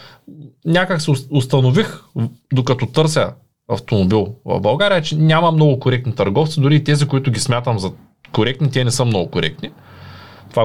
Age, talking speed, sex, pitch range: 20-39, 150 wpm, male, 105-145 Hz